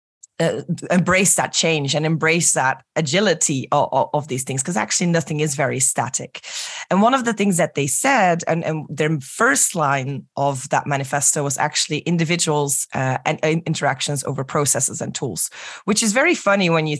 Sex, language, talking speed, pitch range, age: female, English, 185 wpm, 145-175 Hz, 20-39